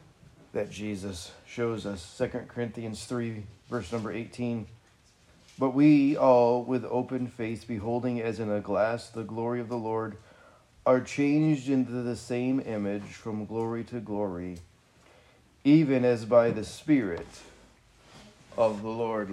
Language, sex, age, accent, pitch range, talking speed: English, male, 30-49, American, 100-120 Hz, 135 wpm